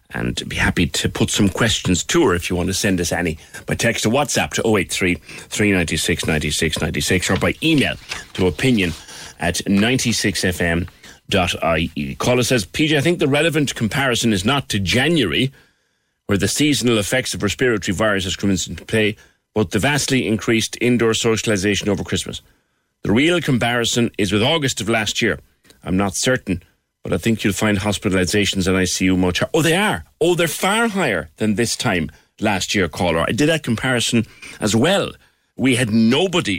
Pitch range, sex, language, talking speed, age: 95-125 Hz, male, English, 175 wpm, 30-49